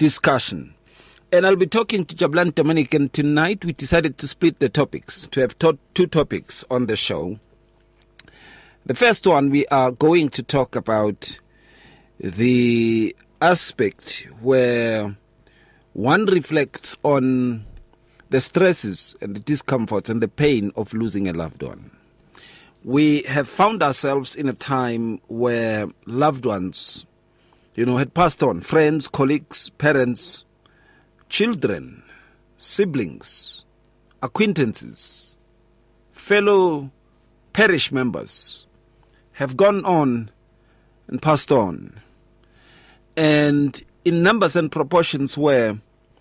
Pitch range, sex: 115-160 Hz, male